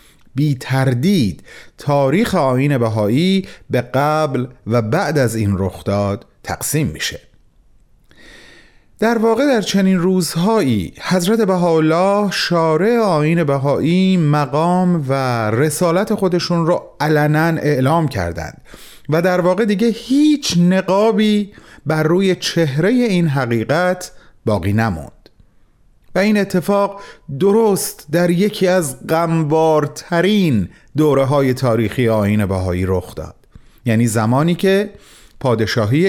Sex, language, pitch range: male, Persian, 125-190 Hz